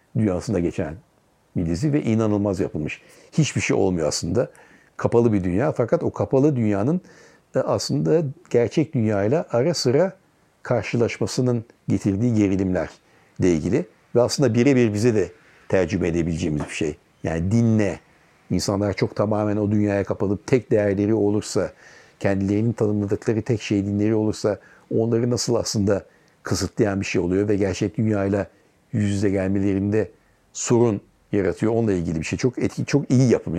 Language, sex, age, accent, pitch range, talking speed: Turkish, male, 60-79, native, 100-120 Hz, 135 wpm